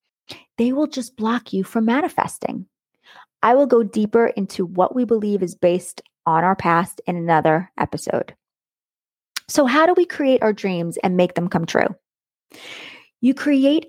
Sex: female